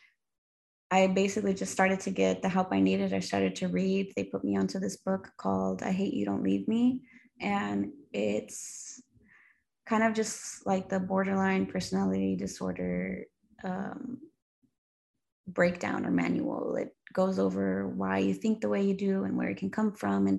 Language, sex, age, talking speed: English, female, 20-39, 170 wpm